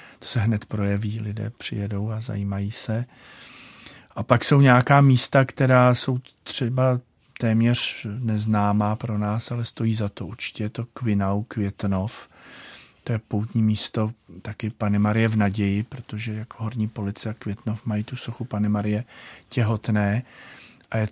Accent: native